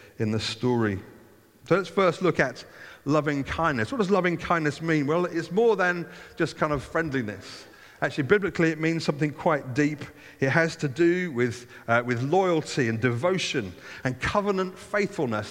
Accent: British